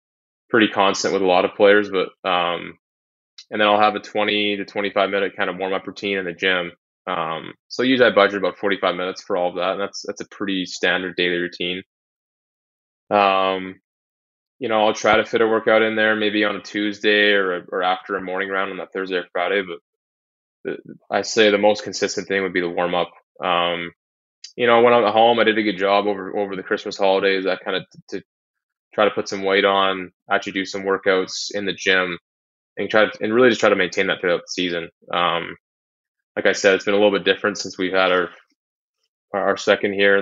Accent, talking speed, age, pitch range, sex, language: American, 220 wpm, 20-39, 90-105 Hz, male, English